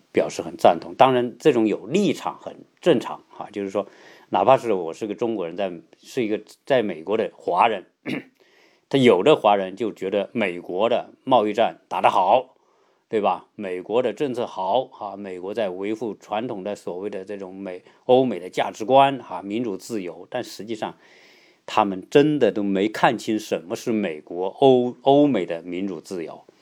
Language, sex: Chinese, male